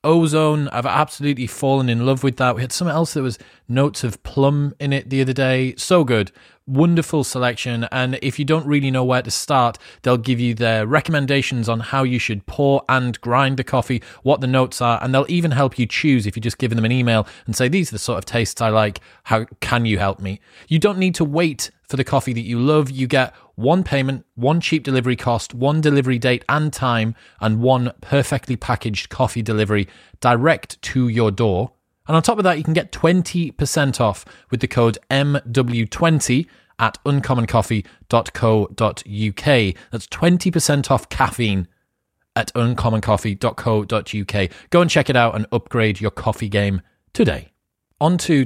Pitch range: 115-140 Hz